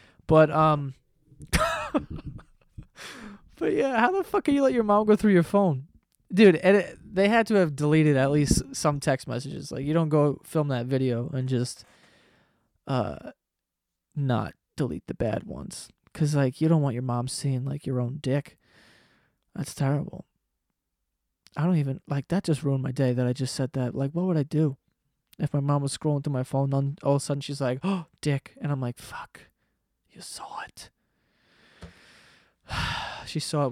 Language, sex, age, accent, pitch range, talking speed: English, male, 20-39, American, 135-175 Hz, 185 wpm